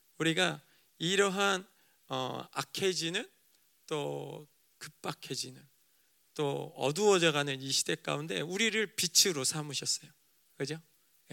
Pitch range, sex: 135-175 Hz, male